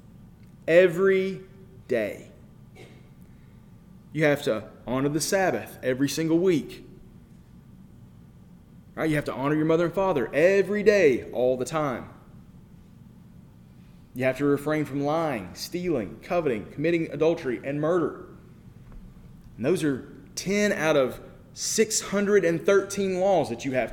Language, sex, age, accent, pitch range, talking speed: Italian, male, 30-49, American, 115-165 Hz, 120 wpm